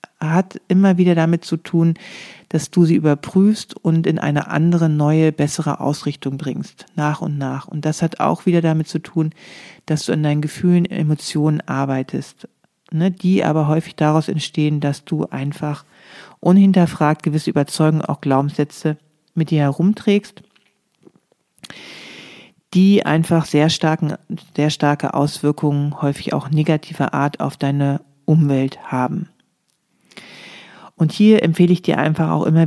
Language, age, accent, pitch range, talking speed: German, 40-59, German, 150-175 Hz, 135 wpm